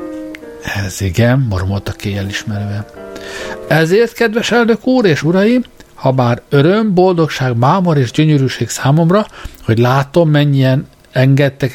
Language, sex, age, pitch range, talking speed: Hungarian, male, 60-79, 105-170 Hz, 125 wpm